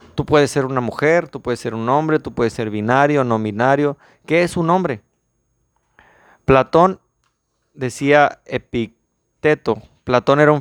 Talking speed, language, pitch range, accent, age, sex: 145 wpm, Spanish, 115-145 Hz, Mexican, 30-49, male